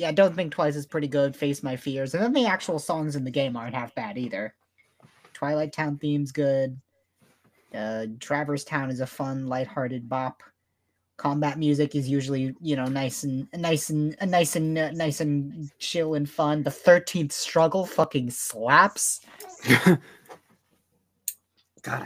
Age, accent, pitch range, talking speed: 30-49, American, 130-165 Hz, 160 wpm